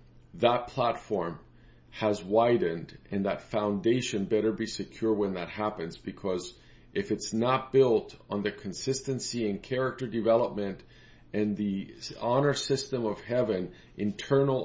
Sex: male